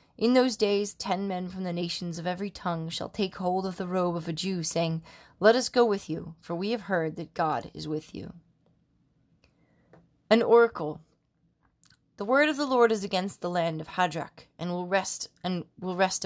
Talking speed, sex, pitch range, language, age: 200 wpm, female, 165-195 Hz, English, 20-39